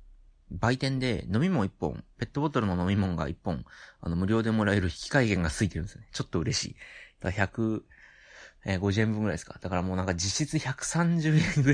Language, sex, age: Japanese, male, 30-49